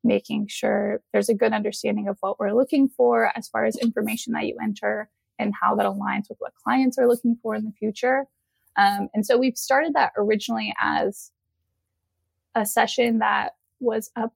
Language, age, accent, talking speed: English, 20-39, American, 185 wpm